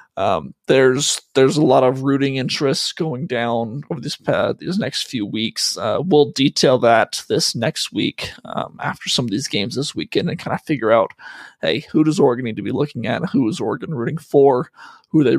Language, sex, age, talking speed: English, male, 20-39, 210 wpm